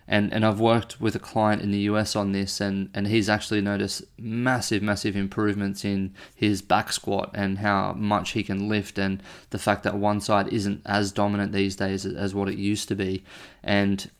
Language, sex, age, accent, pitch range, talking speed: English, male, 20-39, Australian, 100-110 Hz, 205 wpm